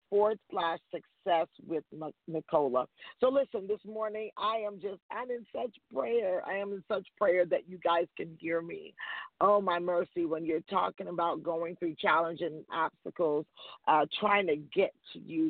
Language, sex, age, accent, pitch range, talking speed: English, female, 40-59, American, 160-185 Hz, 170 wpm